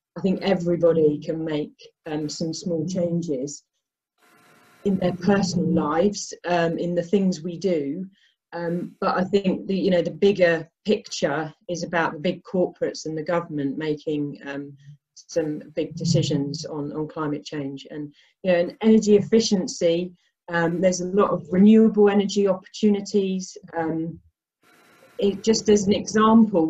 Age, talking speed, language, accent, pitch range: 40-59, 150 wpm, English, British, 165-200 Hz